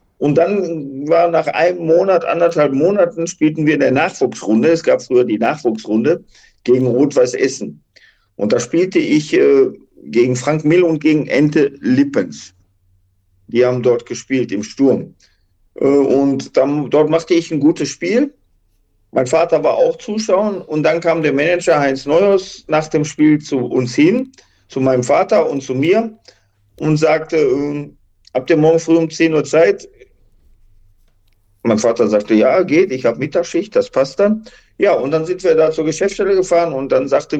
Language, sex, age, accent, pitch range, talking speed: German, male, 50-69, German, 120-165 Hz, 170 wpm